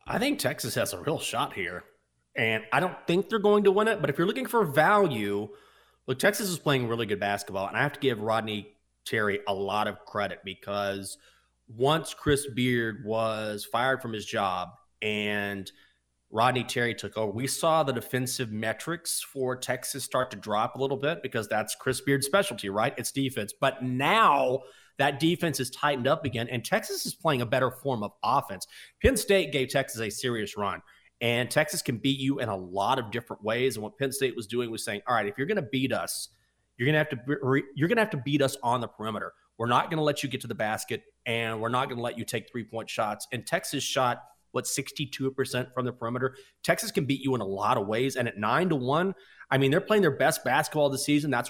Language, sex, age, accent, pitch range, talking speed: English, male, 30-49, American, 115-150 Hz, 220 wpm